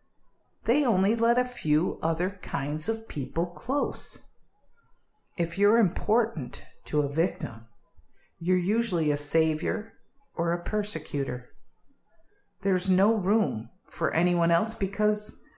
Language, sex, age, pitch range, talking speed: English, female, 50-69, 150-210 Hz, 115 wpm